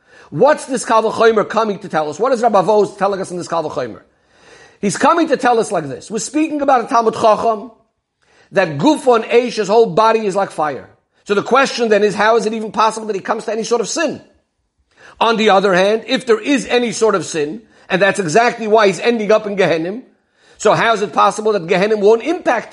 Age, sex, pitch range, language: 50-69, male, 195-240 Hz, English